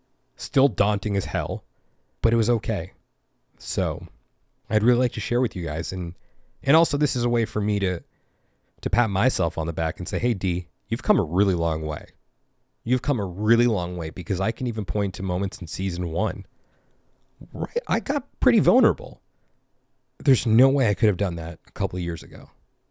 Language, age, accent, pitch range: English, 30-49, American, 90-120 Hz